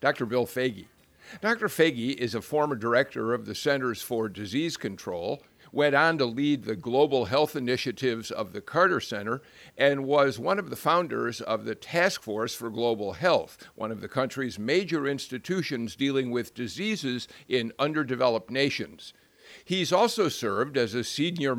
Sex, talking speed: male, 160 wpm